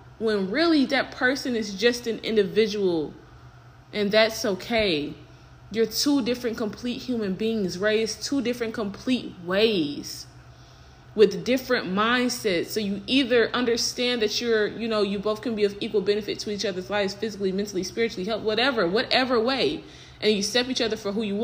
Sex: female